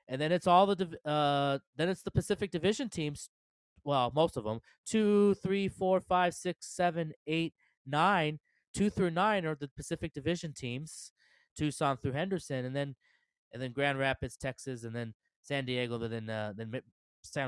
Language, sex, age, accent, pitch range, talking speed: English, male, 20-39, American, 115-150 Hz, 175 wpm